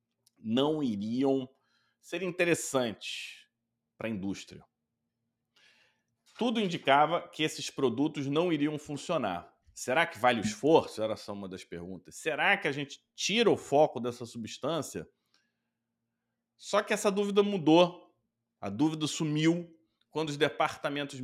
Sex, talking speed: male, 125 wpm